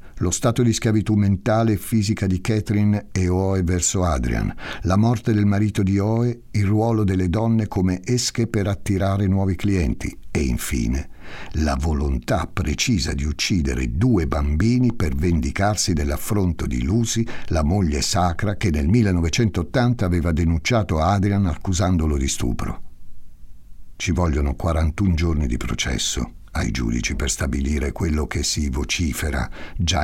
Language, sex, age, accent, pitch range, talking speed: Italian, male, 60-79, native, 75-105 Hz, 140 wpm